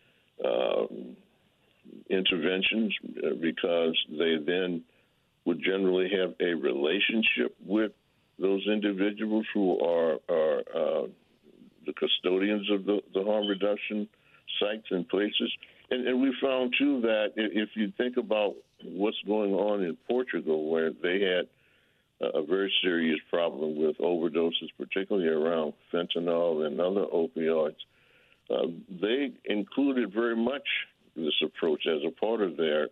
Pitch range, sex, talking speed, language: 85-115 Hz, male, 125 wpm, English